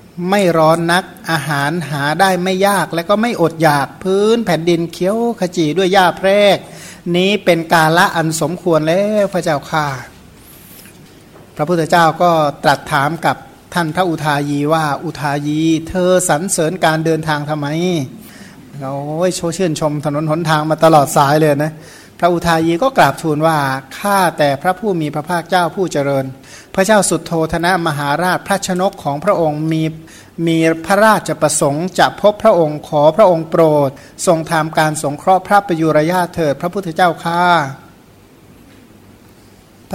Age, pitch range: 60-79, 150-180 Hz